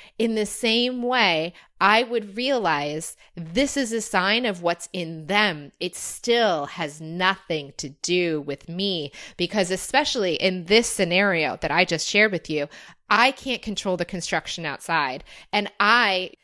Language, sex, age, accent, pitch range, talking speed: English, female, 30-49, American, 170-225 Hz, 155 wpm